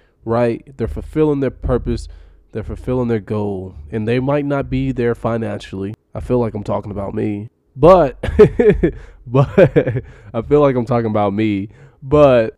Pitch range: 110-145 Hz